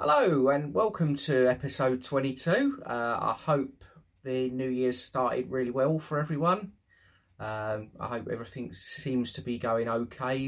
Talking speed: 150 wpm